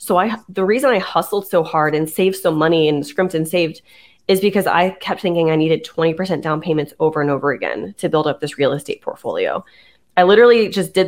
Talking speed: 225 wpm